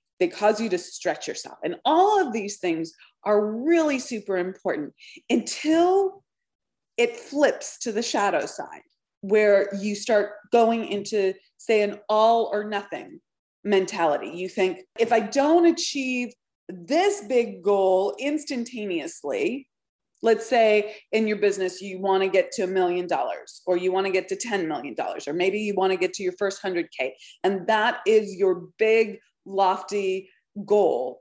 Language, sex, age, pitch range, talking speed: English, female, 30-49, 195-245 Hz, 160 wpm